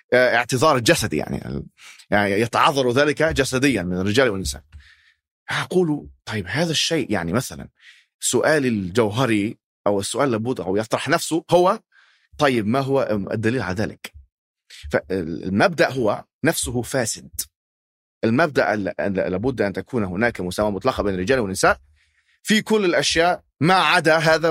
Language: Arabic